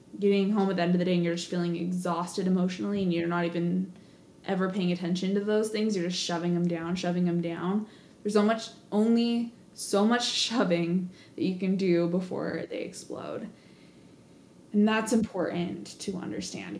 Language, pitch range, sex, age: English, 170-195 Hz, female, 20-39